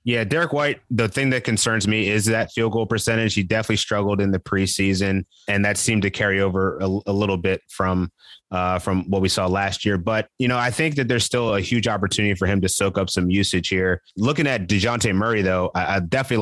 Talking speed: 235 wpm